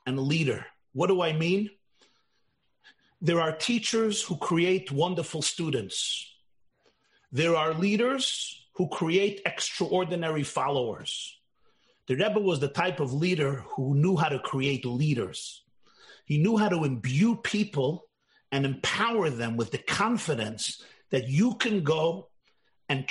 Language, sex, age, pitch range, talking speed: English, male, 50-69, 150-220 Hz, 125 wpm